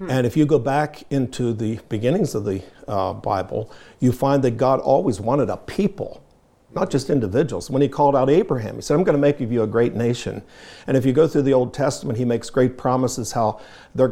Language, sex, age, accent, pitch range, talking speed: English, male, 60-79, American, 110-135 Hz, 220 wpm